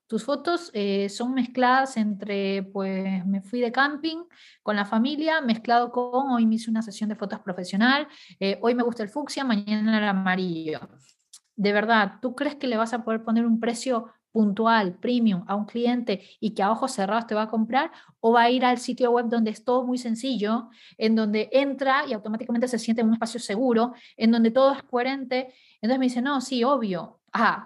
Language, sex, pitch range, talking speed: Spanish, female, 205-250 Hz, 205 wpm